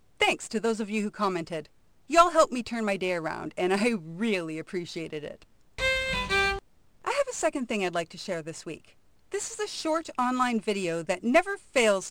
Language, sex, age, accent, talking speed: English, female, 40-59, American, 195 wpm